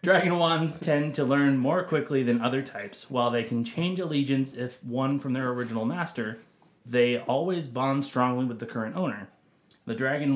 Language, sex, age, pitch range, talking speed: English, male, 30-49, 115-160 Hz, 180 wpm